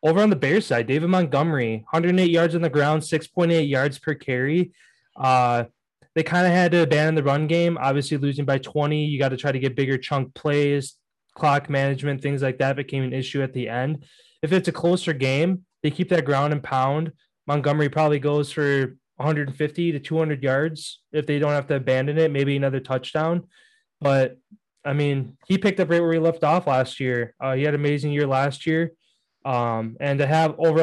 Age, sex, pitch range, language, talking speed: 20-39, male, 135-160 Hz, English, 205 wpm